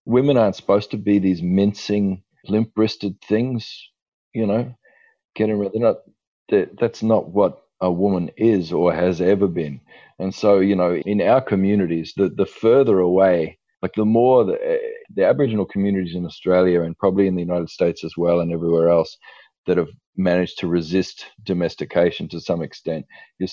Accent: Australian